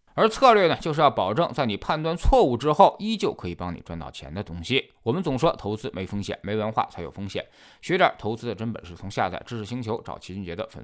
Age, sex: 20-39, male